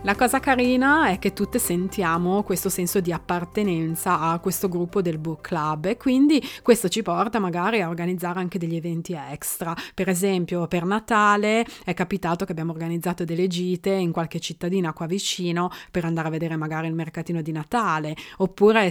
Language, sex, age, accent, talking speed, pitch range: Italian, female, 20-39, native, 175 wpm, 165-200 Hz